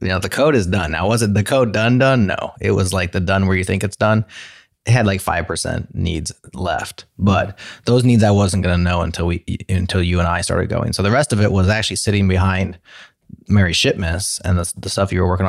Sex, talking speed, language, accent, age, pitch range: male, 250 wpm, English, American, 20-39, 90-110 Hz